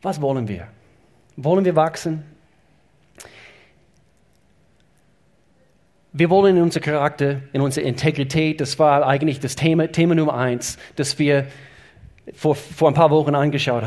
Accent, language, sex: German, German, male